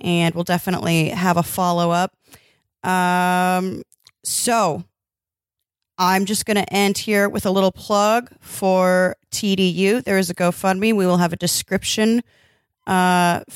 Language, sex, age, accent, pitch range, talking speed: English, female, 30-49, American, 175-205 Hz, 135 wpm